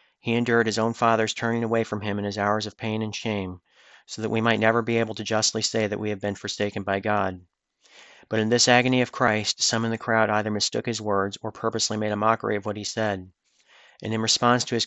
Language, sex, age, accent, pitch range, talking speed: English, male, 40-59, American, 105-115 Hz, 245 wpm